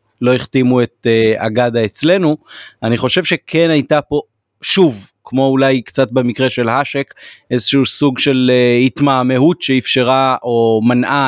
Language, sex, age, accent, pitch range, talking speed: Hebrew, male, 30-49, native, 120-140 Hz, 140 wpm